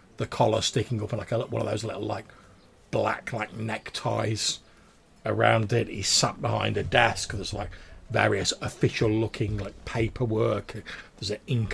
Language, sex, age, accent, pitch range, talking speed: English, male, 40-59, British, 100-115 Hz, 160 wpm